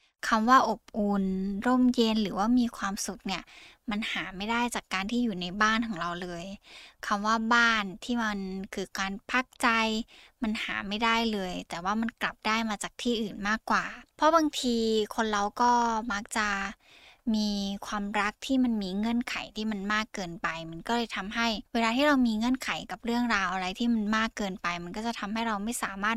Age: 10-29